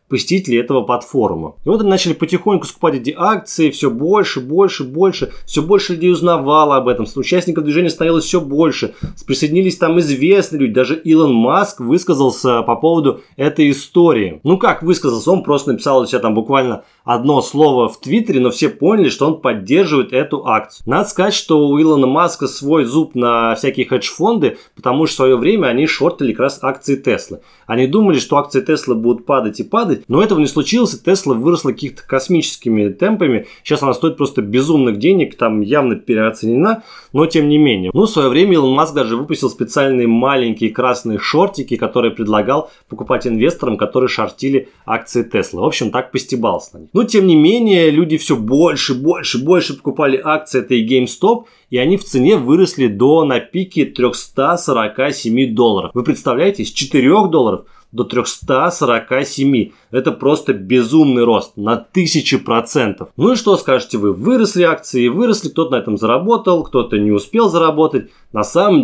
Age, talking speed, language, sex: 20-39, 170 wpm, Russian, male